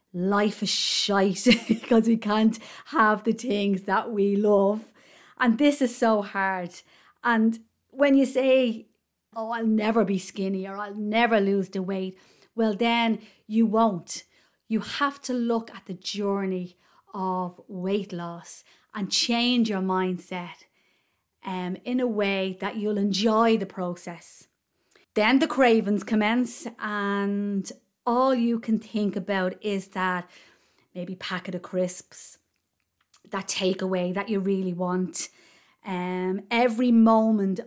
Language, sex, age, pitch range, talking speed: English, female, 30-49, 185-225 Hz, 135 wpm